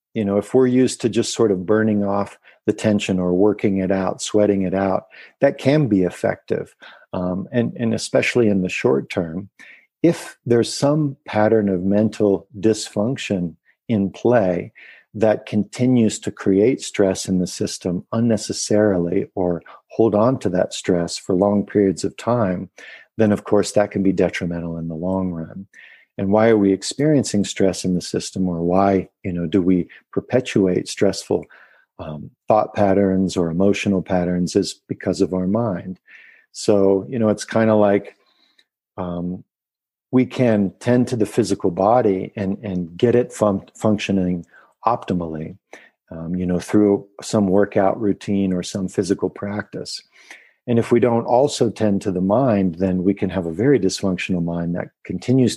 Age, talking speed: 50-69, 165 wpm